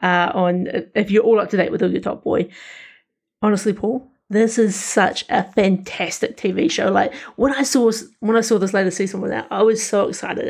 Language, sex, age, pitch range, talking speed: English, female, 30-49, 190-230 Hz, 210 wpm